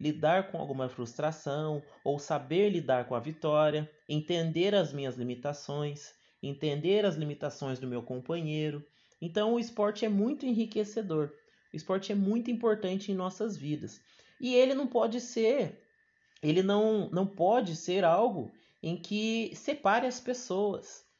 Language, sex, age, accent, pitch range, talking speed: Portuguese, male, 30-49, Brazilian, 165-225 Hz, 140 wpm